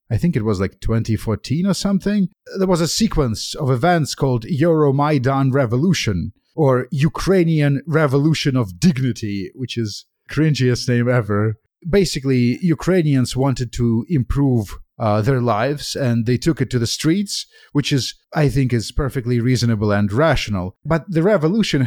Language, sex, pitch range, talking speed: English, male, 115-155 Hz, 150 wpm